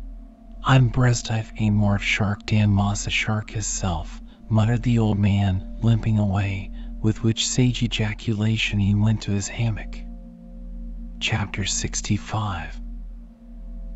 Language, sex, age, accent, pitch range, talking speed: English, male, 40-59, American, 100-120 Hz, 105 wpm